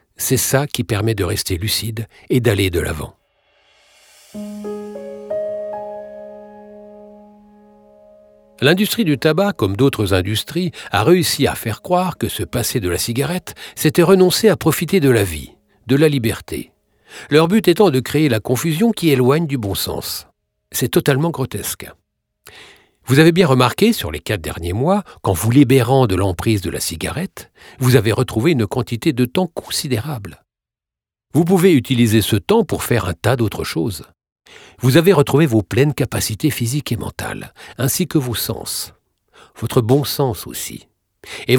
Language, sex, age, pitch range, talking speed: French, male, 60-79, 110-170 Hz, 155 wpm